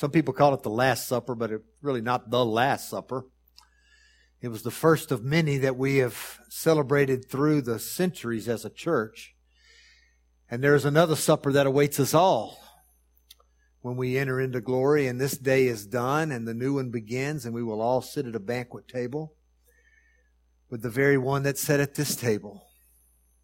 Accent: American